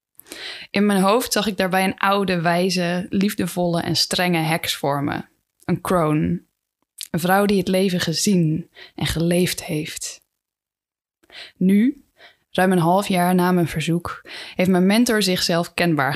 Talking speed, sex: 145 wpm, female